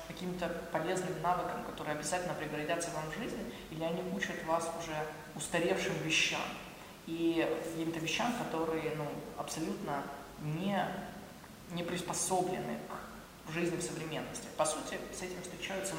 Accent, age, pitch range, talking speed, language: native, 20-39, 155-180 Hz, 130 wpm, Russian